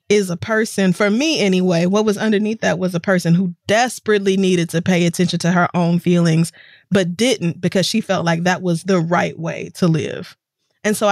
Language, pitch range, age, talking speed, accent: English, 180-220 Hz, 20-39, 205 wpm, American